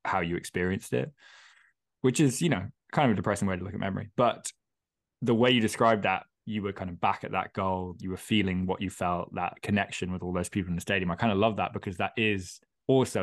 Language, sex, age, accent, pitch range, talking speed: English, male, 10-29, British, 90-110 Hz, 250 wpm